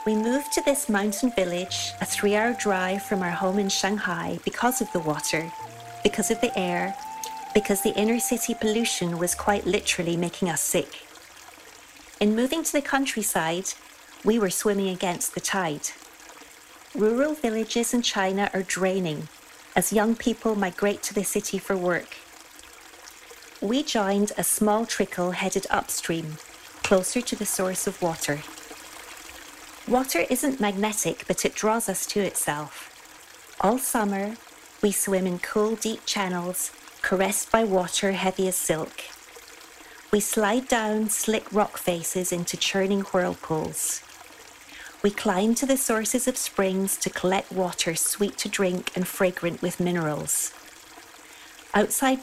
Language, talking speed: English, 140 wpm